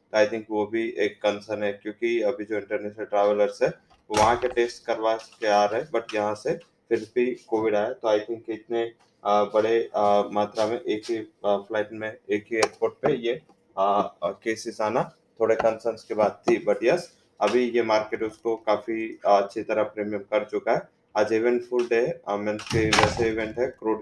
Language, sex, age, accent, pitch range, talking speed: English, male, 20-39, Indian, 105-115 Hz, 175 wpm